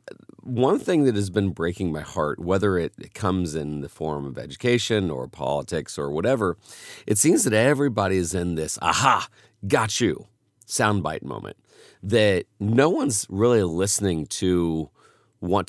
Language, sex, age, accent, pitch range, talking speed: English, male, 40-59, American, 95-115 Hz, 150 wpm